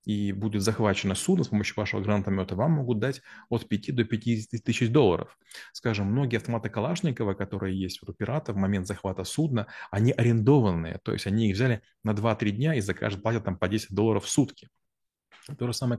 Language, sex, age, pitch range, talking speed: Russian, male, 30-49, 100-120 Hz, 190 wpm